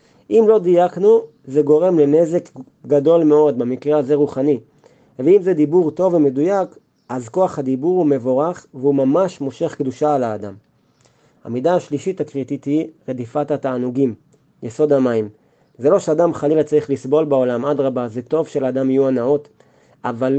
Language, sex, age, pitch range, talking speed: Hebrew, male, 30-49, 135-160 Hz, 145 wpm